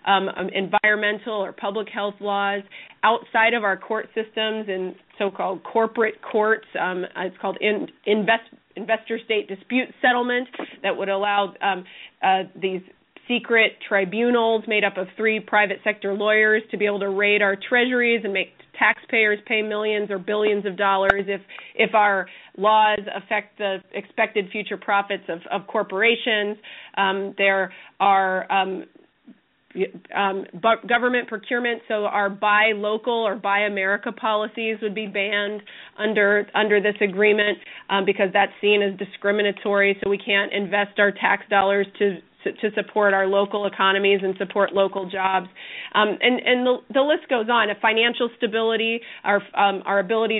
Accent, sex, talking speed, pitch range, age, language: American, female, 155 wpm, 195-220 Hz, 30-49, English